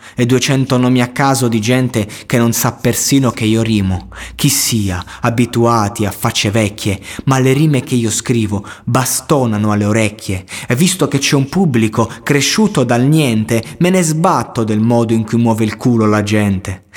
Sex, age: male, 20-39